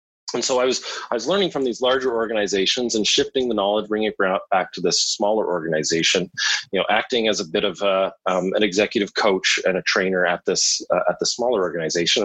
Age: 30-49